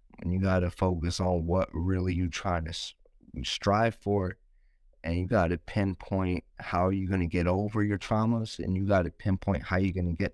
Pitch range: 85-100 Hz